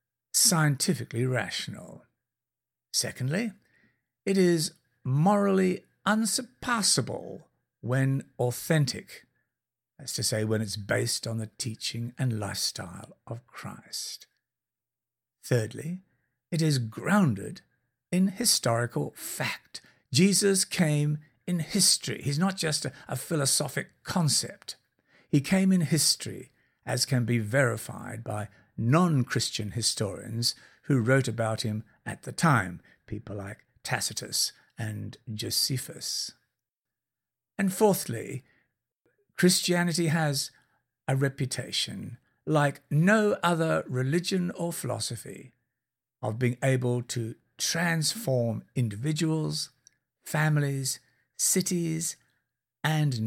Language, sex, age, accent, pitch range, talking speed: English, male, 60-79, British, 120-165 Hz, 95 wpm